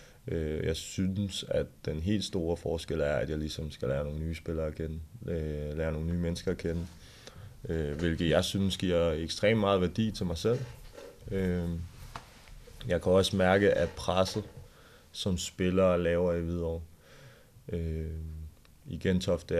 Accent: native